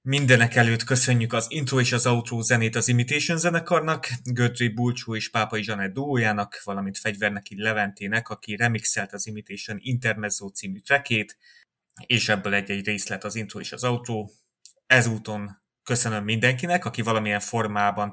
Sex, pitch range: male, 100-120 Hz